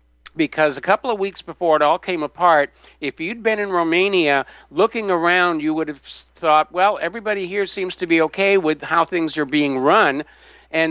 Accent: American